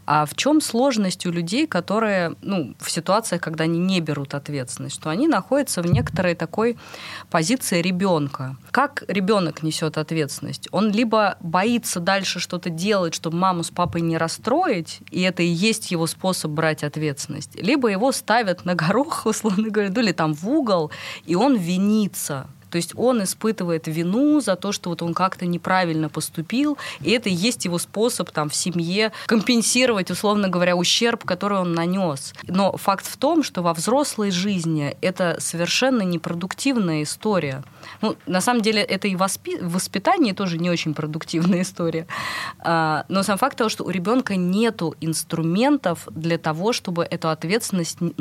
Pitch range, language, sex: 165-215 Hz, Russian, female